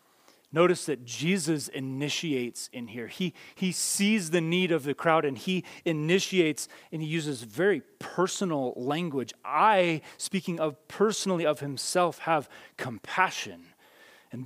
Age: 30-49